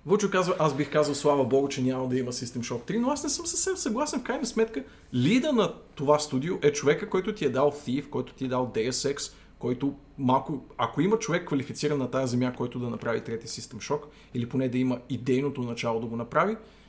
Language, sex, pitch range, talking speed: Bulgarian, male, 125-150 Hz, 225 wpm